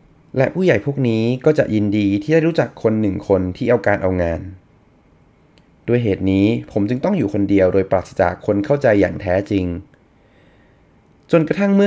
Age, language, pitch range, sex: 20-39, Thai, 95-125 Hz, male